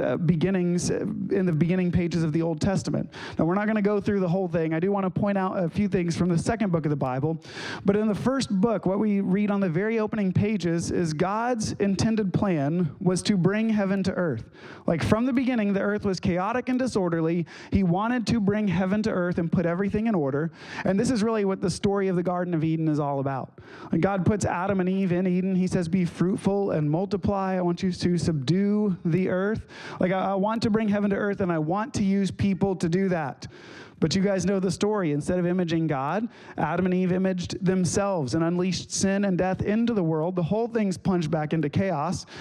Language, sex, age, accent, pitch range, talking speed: English, male, 30-49, American, 175-210 Hz, 235 wpm